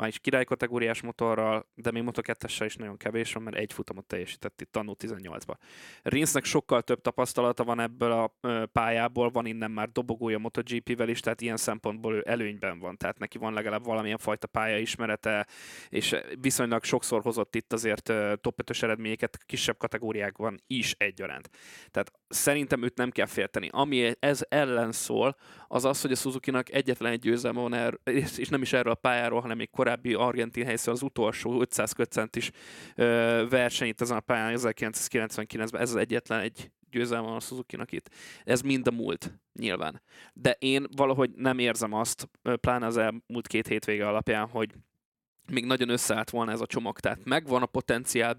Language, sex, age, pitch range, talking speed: Hungarian, male, 20-39, 110-125 Hz, 165 wpm